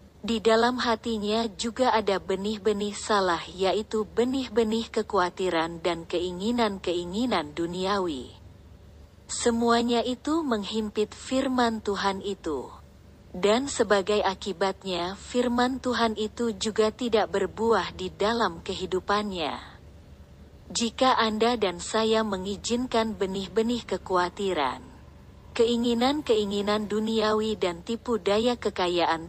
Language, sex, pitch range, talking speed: Indonesian, female, 185-230 Hz, 90 wpm